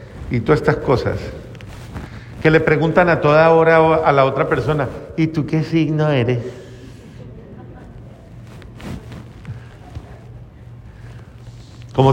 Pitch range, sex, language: 120-165 Hz, male, Spanish